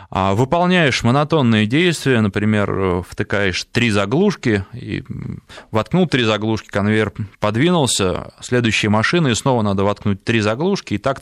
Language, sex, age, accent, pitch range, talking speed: Russian, male, 20-39, native, 105-140 Hz, 125 wpm